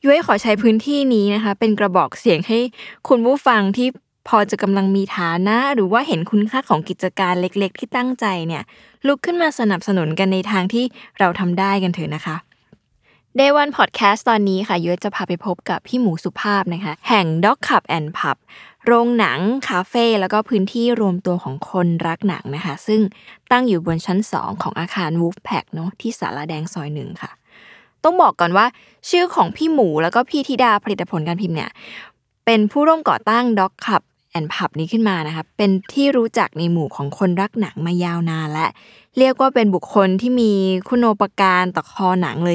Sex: female